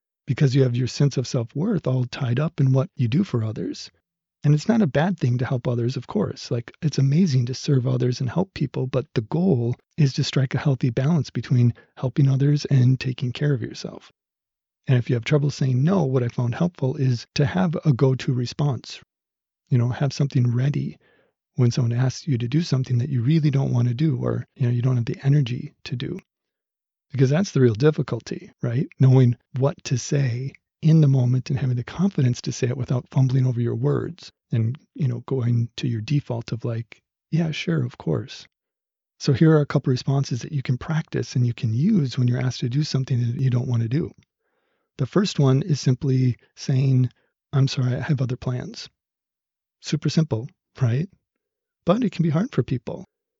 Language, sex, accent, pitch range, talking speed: English, male, American, 125-155 Hz, 210 wpm